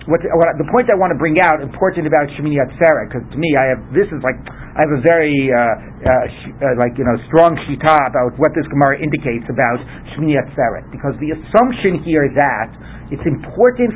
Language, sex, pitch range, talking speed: English, male, 145-190 Hz, 220 wpm